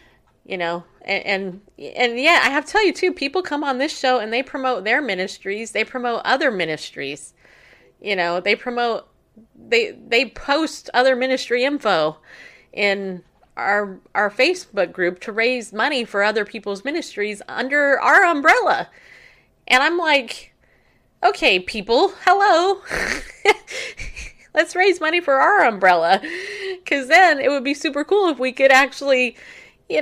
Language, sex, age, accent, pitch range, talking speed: English, female, 30-49, American, 175-280 Hz, 150 wpm